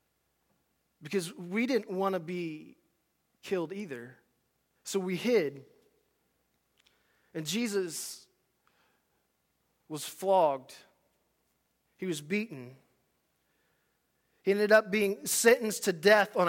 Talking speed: 95 wpm